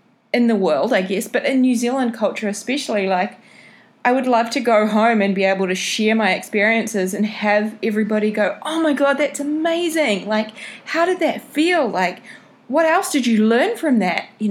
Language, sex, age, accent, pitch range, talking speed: English, female, 20-39, Australian, 190-235 Hz, 200 wpm